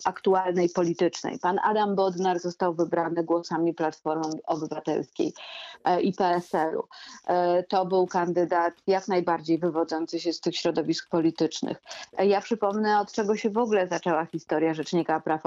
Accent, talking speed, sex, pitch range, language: native, 130 wpm, female, 170-200 Hz, Polish